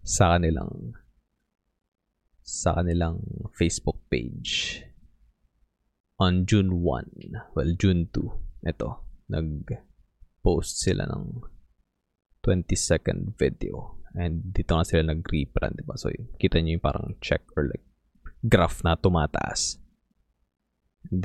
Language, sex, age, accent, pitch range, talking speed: English, male, 20-39, Filipino, 80-95 Hz, 100 wpm